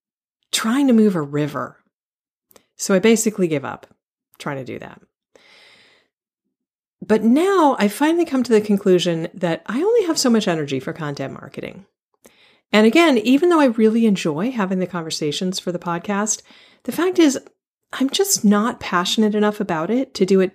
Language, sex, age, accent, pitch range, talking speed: English, female, 40-59, American, 170-235 Hz, 170 wpm